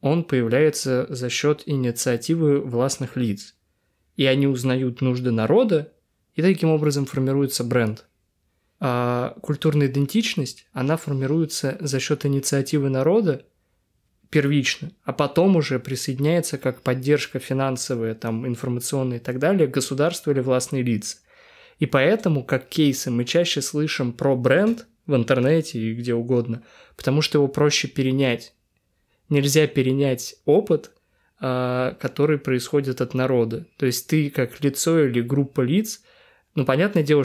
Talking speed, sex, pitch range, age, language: 130 wpm, male, 120-150 Hz, 20-39, Russian